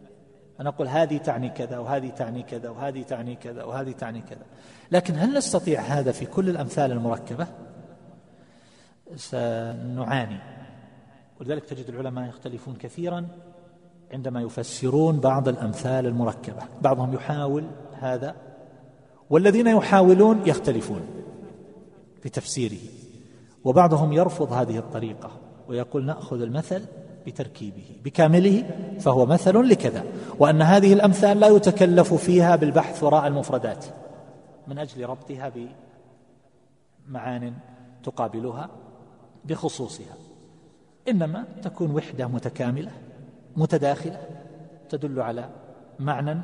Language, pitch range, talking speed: Arabic, 125-160 Hz, 100 wpm